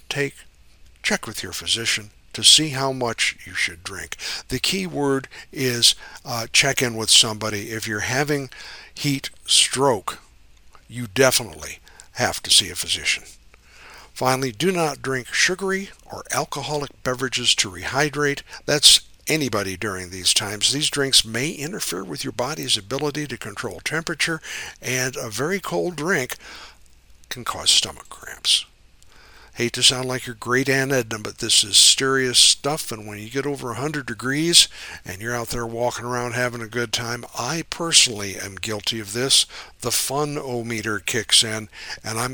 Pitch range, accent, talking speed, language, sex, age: 110-140 Hz, American, 155 wpm, English, male, 60-79